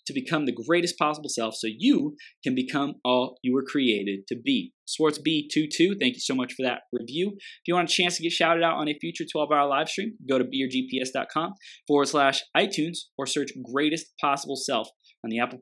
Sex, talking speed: male, 210 wpm